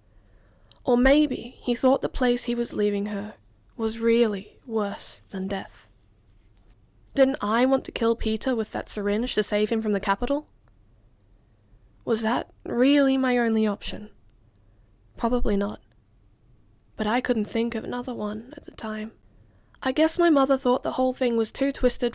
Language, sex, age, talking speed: English, female, 10-29, 160 wpm